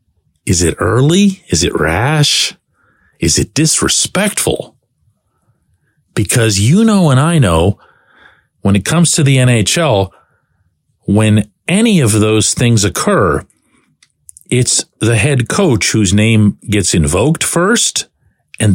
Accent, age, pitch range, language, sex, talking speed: American, 50-69, 100-145 Hz, English, male, 120 wpm